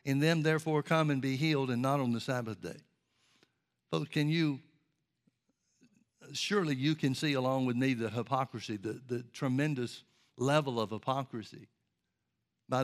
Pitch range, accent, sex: 130-150 Hz, American, male